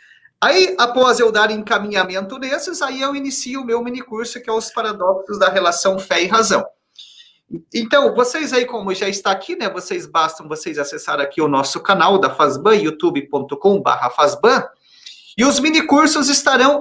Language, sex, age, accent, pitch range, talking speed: Portuguese, male, 40-59, Brazilian, 205-280 Hz, 160 wpm